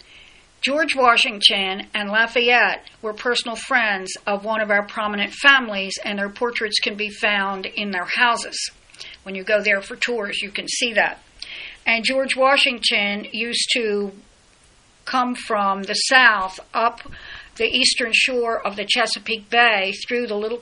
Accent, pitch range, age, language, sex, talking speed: American, 205-240 Hz, 60-79, English, female, 150 wpm